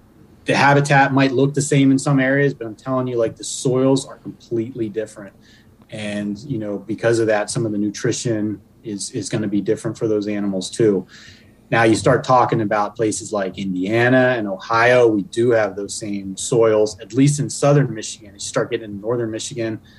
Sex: male